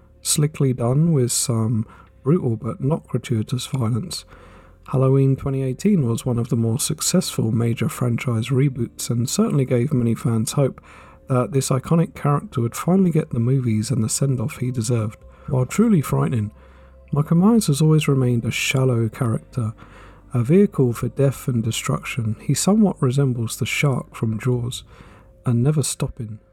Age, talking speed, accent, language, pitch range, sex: 50-69, 150 wpm, British, English, 115-145 Hz, male